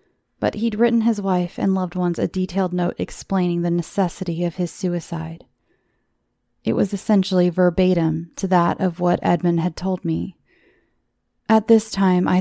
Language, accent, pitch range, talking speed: English, American, 165-200 Hz, 160 wpm